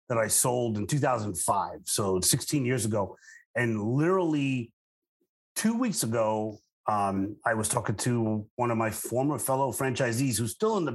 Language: English